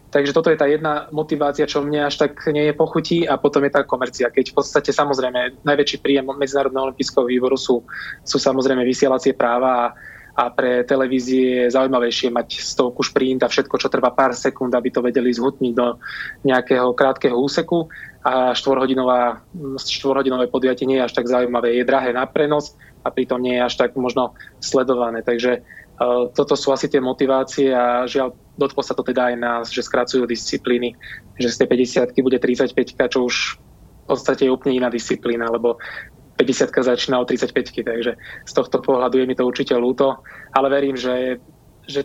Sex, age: male, 20-39